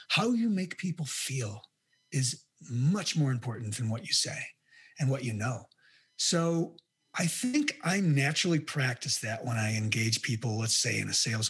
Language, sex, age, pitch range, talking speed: English, male, 30-49, 120-160 Hz, 170 wpm